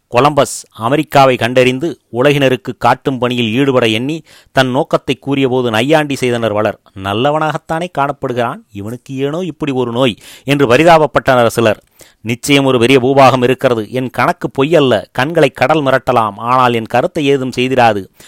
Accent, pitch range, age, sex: native, 115-135 Hz, 30-49, male